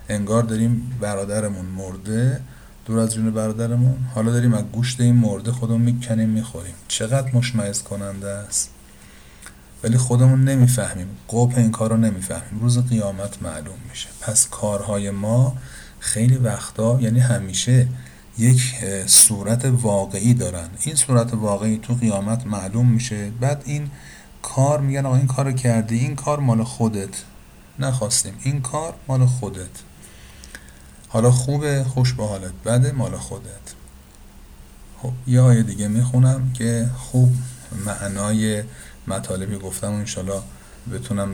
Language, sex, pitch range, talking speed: Persian, male, 100-120 Hz, 125 wpm